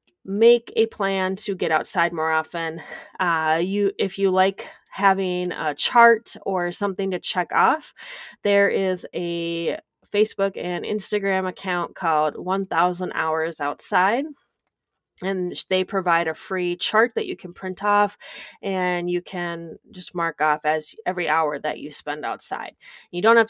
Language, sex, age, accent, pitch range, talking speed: English, female, 20-39, American, 170-210 Hz, 150 wpm